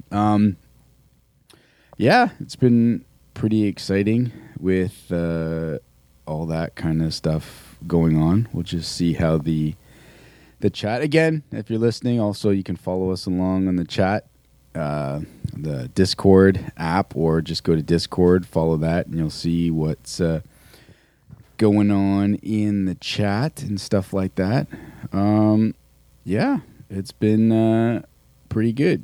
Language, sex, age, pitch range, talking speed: English, male, 30-49, 85-110 Hz, 140 wpm